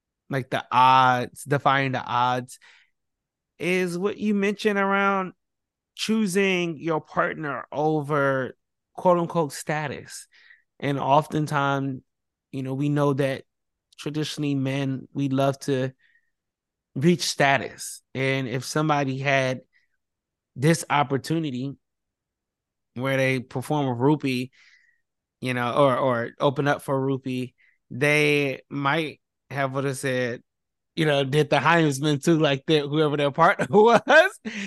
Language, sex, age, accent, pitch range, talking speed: English, male, 20-39, American, 130-165 Hz, 120 wpm